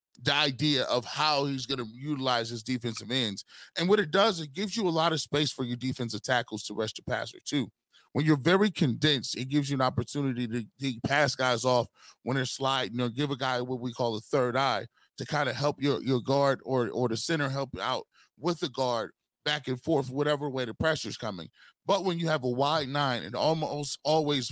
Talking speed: 225 wpm